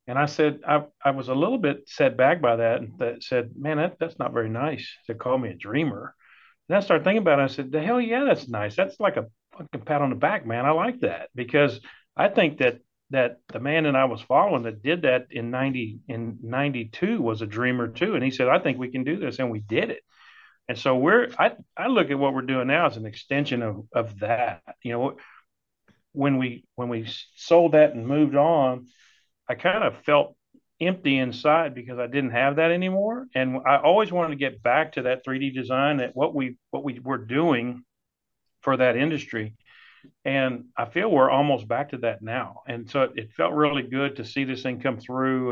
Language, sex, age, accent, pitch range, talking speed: English, male, 50-69, American, 120-145 Hz, 225 wpm